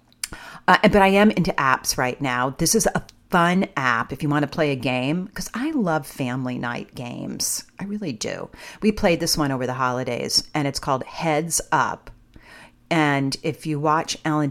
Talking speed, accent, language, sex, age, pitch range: 190 wpm, American, English, female, 50-69, 130-155 Hz